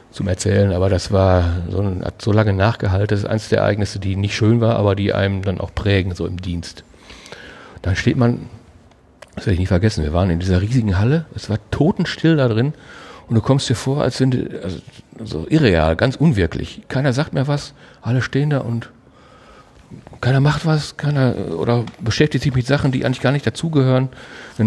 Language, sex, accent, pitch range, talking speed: German, male, German, 100-125 Hz, 200 wpm